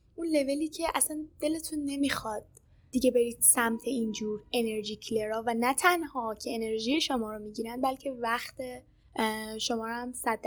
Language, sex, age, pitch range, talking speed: English, female, 10-29, 225-270 Hz, 150 wpm